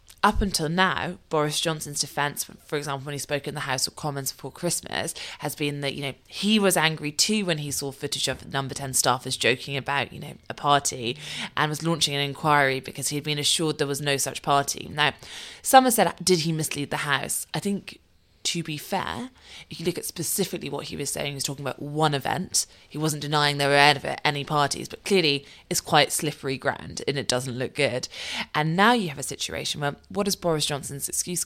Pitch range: 140-170 Hz